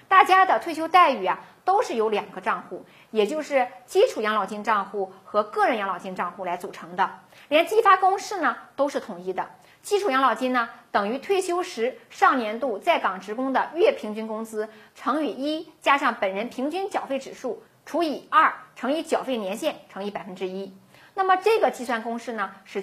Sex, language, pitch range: female, Chinese, 210-320 Hz